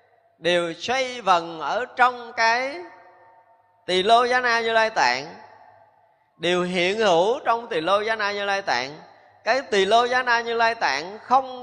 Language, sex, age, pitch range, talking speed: Vietnamese, male, 20-39, 175-240 Hz, 170 wpm